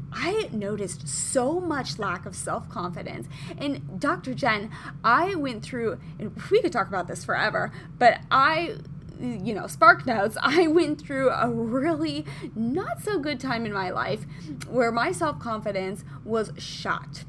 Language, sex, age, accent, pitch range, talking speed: English, female, 20-39, American, 165-275 Hz, 150 wpm